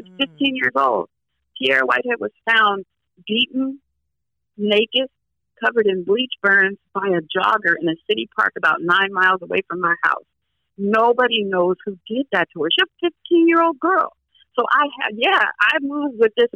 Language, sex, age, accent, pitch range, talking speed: English, female, 50-69, American, 165-215 Hz, 165 wpm